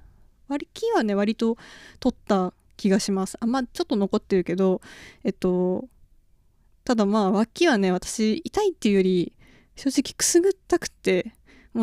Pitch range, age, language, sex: 190-250 Hz, 20-39, Japanese, female